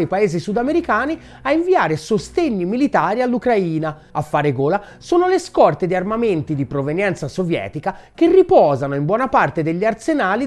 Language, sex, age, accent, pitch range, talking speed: Italian, male, 30-49, native, 165-270 Hz, 145 wpm